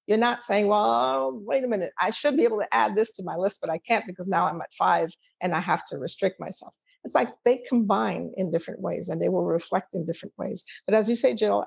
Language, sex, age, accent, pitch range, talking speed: English, female, 50-69, American, 175-205 Hz, 255 wpm